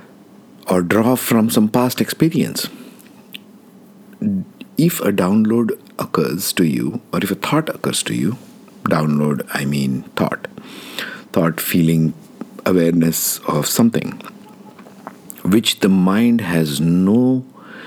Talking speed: 110 wpm